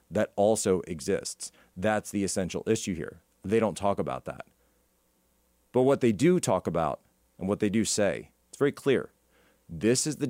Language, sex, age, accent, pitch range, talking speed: English, male, 40-59, American, 95-130 Hz, 175 wpm